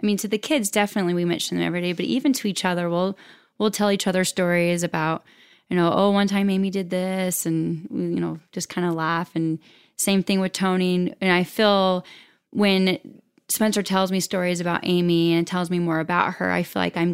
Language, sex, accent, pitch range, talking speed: English, female, American, 170-195 Hz, 220 wpm